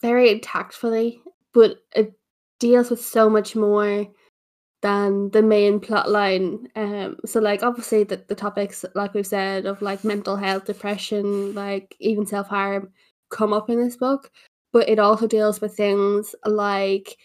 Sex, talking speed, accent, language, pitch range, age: female, 155 wpm, Irish, English, 200-225 Hz, 10-29